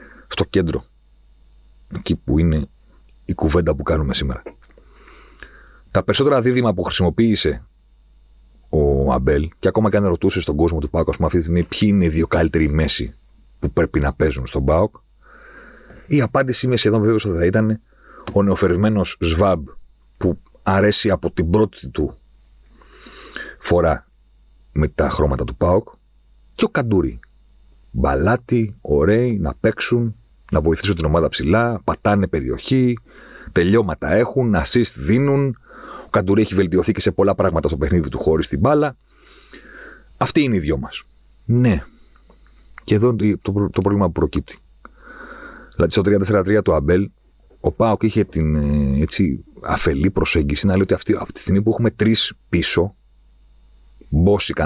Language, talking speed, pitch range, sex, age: Greek, 140 wpm, 70-105 Hz, male, 40-59